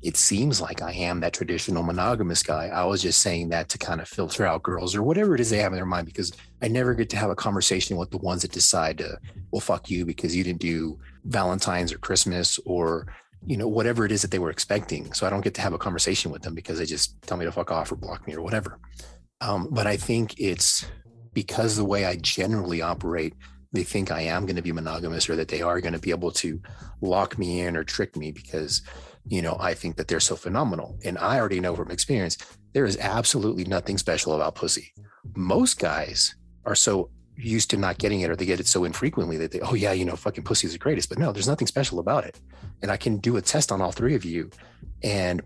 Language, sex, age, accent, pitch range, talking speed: English, male, 30-49, American, 85-110 Hz, 245 wpm